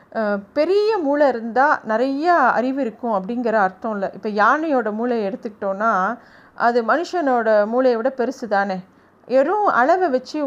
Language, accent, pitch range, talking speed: Tamil, native, 230-280 Hz, 125 wpm